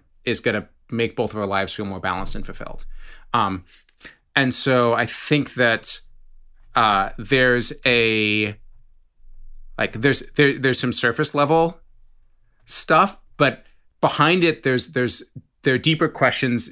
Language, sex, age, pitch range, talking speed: English, male, 30-49, 115-140 Hz, 135 wpm